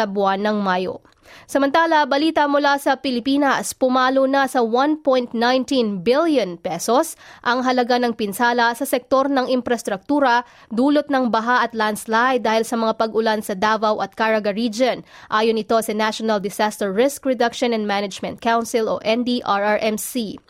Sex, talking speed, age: female, 145 wpm, 20-39